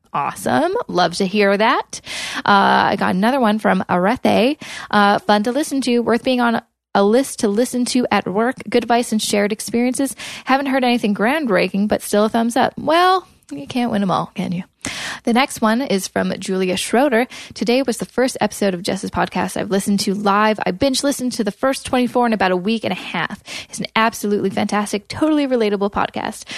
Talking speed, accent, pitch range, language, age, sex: 200 wpm, American, 195-245 Hz, English, 10-29, female